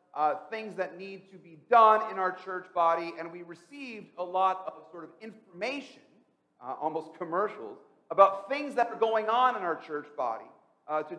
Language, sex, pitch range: English, male, 165-265 Hz